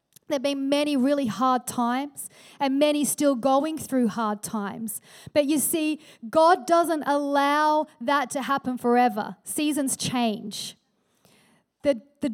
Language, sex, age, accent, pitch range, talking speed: English, female, 40-59, Australian, 260-310 Hz, 135 wpm